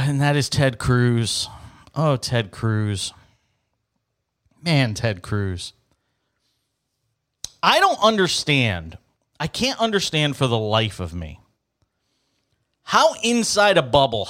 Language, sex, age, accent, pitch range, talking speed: English, male, 40-59, American, 115-175 Hz, 110 wpm